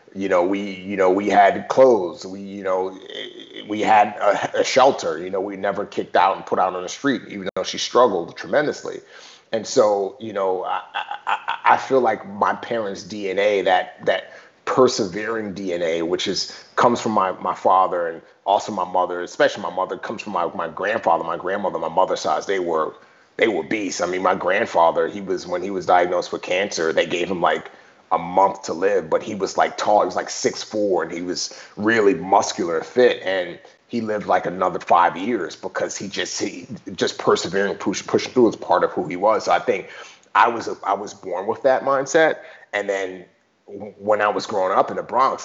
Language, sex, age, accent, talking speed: English, male, 30-49, American, 205 wpm